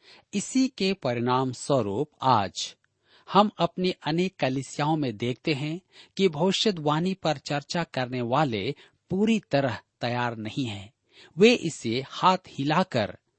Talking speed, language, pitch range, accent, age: 120 wpm, Hindi, 120-170 Hz, native, 50-69